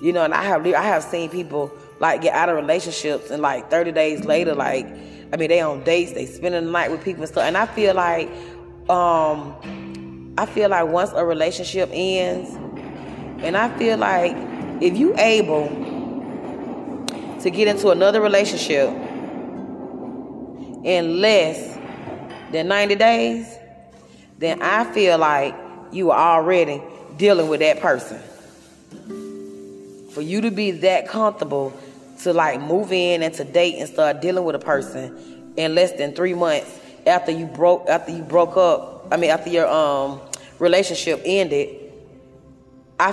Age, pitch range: 20-39, 145-190 Hz